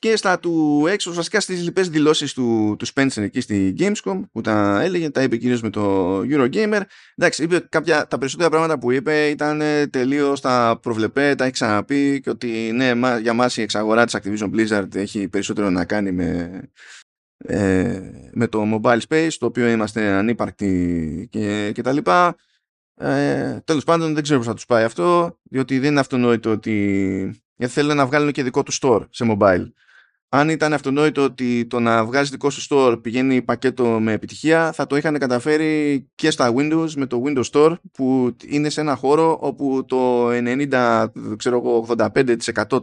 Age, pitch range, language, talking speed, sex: 20-39, 110-150 Hz, Greek, 170 wpm, male